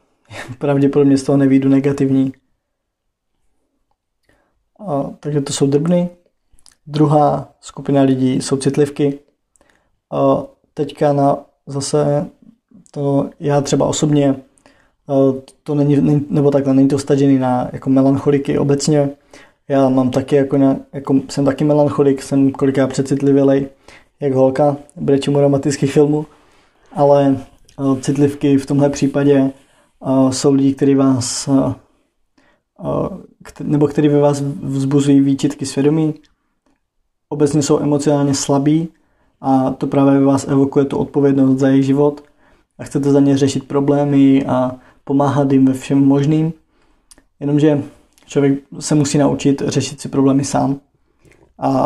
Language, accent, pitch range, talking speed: Czech, native, 135-145 Hz, 125 wpm